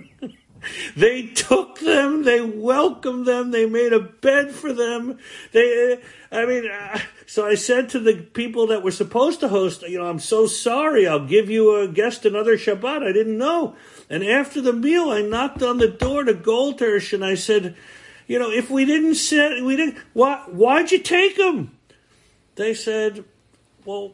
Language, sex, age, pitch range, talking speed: English, male, 50-69, 215-295 Hz, 180 wpm